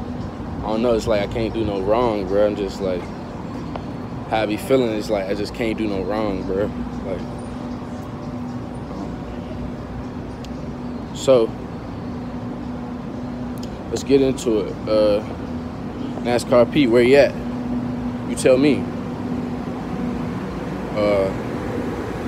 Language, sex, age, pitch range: English, male, 20-39, 110-135 Hz